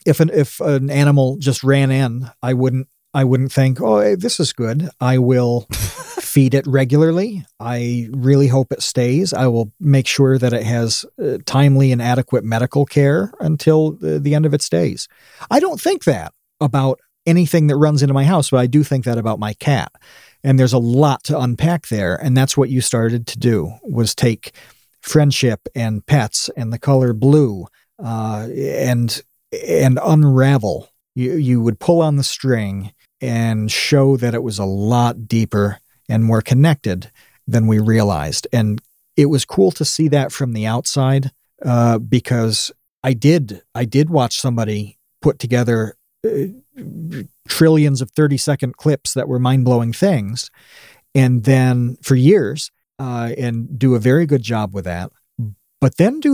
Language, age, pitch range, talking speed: English, 40-59, 115-145 Hz, 170 wpm